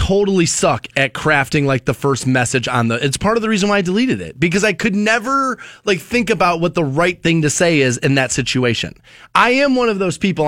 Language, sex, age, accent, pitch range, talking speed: English, male, 20-39, American, 150-205 Hz, 240 wpm